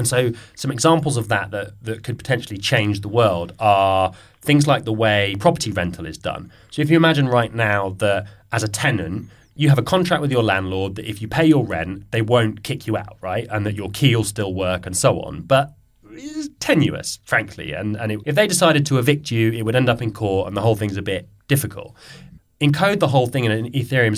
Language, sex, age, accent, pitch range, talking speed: English, male, 20-39, British, 105-130 Hz, 230 wpm